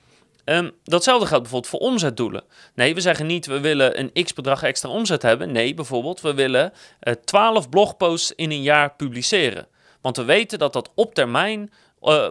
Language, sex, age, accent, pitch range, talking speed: Dutch, male, 30-49, Dutch, 130-180 Hz, 175 wpm